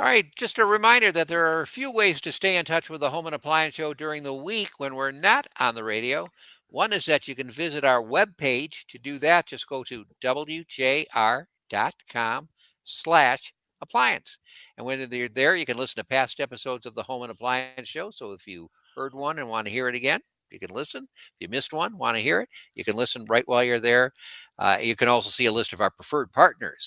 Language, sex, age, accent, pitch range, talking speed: English, male, 60-79, American, 125-165 Hz, 230 wpm